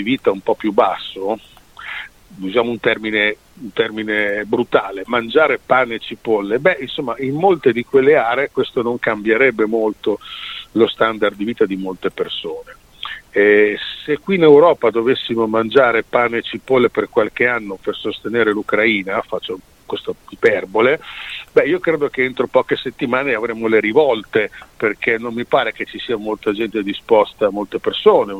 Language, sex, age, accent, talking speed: Italian, male, 50-69, native, 155 wpm